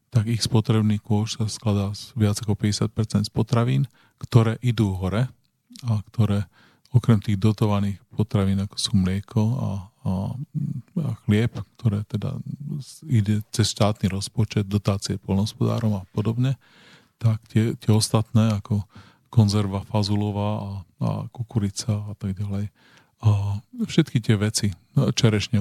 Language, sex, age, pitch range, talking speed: Slovak, male, 40-59, 105-125 Hz, 130 wpm